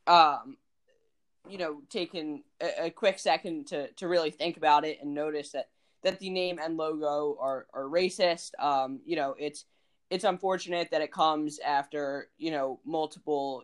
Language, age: English, 10-29